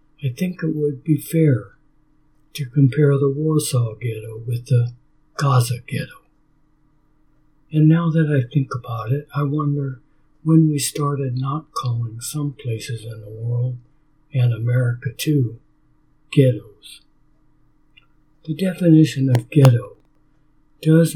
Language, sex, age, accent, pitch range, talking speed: English, male, 60-79, American, 125-150 Hz, 120 wpm